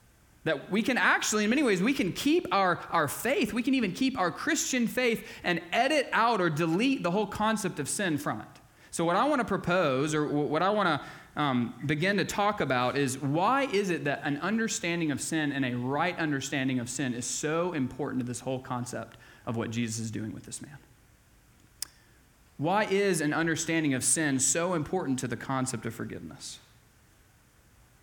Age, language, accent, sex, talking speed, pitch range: 20-39, English, American, male, 195 wpm, 135-190 Hz